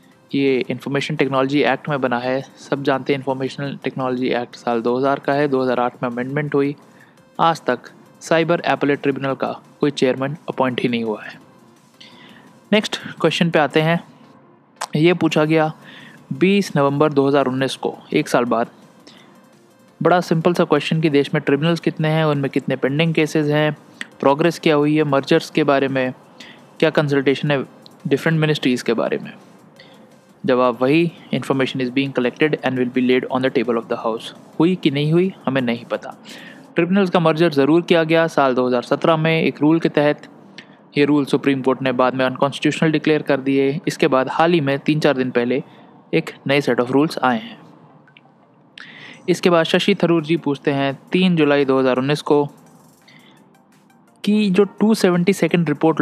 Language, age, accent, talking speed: Hindi, 20-39, native, 170 wpm